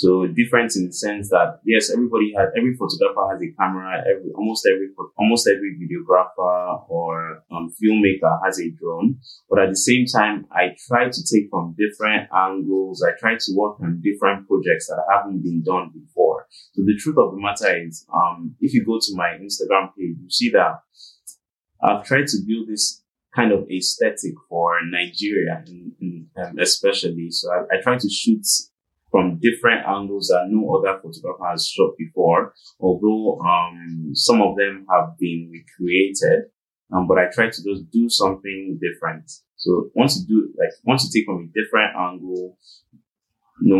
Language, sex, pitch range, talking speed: English, male, 90-105 Hz, 175 wpm